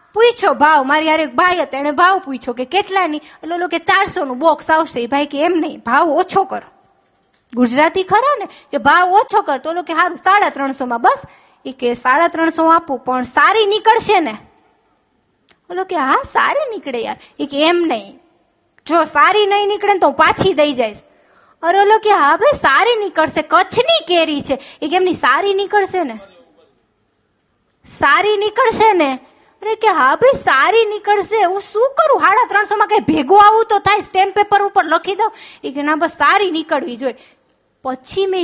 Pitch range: 290-400 Hz